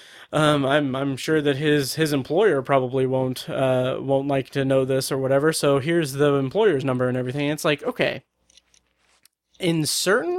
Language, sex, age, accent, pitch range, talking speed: English, male, 20-39, American, 135-160 Hz, 175 wpm